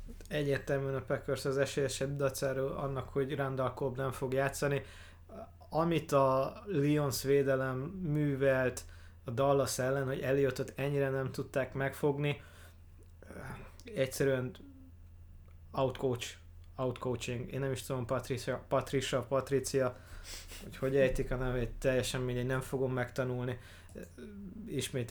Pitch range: 115-135 Hz